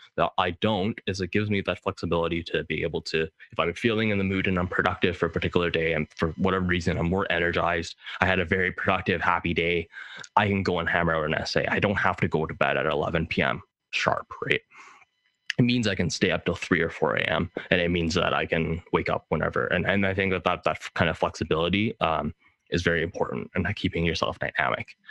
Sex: male